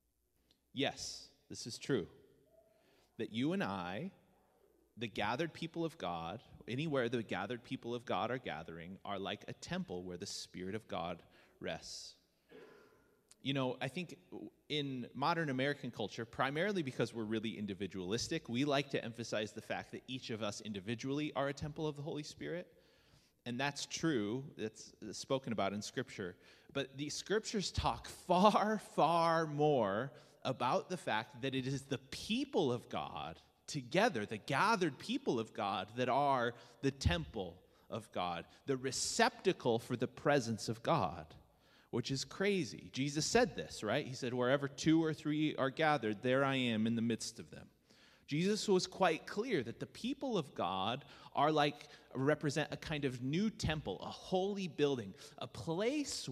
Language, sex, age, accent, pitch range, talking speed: English, male, 30-49, American, 115-160 Hz, 160 wpm